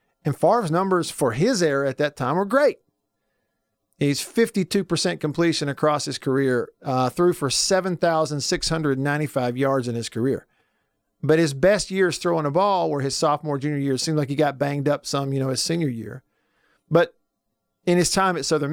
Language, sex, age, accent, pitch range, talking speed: English, male, 50-69, American, 140-180 Hz, 180 wpm